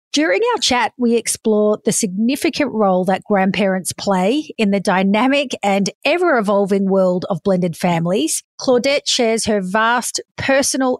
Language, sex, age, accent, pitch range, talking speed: English, female, 40-59, Australian, 200-250 Hz, 135 wpm